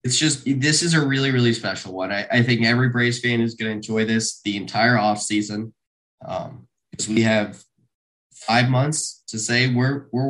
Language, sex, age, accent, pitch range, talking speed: English, male, 10-29, American, 110-130 Hz, 190 wpm